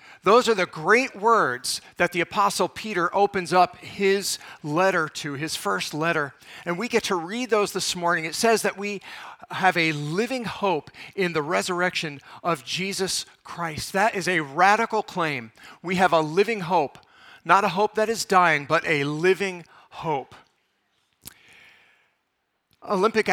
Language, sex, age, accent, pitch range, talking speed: English, male, 50-69, American, 160-205 Hz, 155 wpm